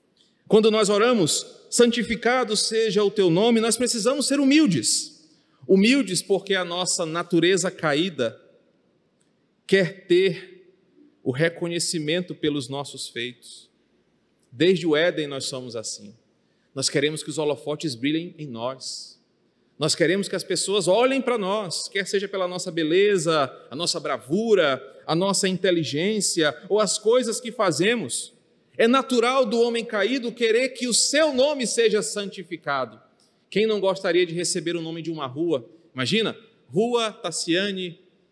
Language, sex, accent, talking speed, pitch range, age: Portuguese, male, Brazilian, 140 wpm, 160-230 Hz, 40-59